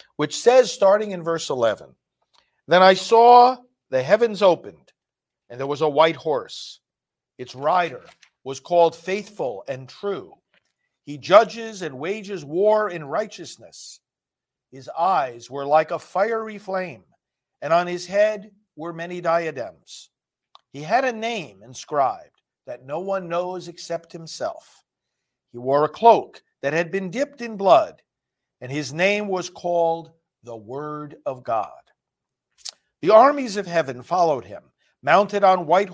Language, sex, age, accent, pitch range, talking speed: English, male, 50-69, American, 150-200 Hz, 140 wpm